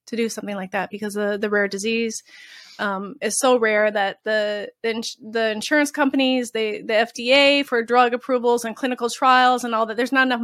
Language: English